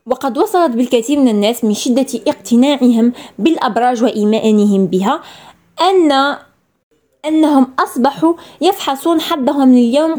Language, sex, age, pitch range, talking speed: Arabic, female, 20-39, 230-290 Hz, 100 wpm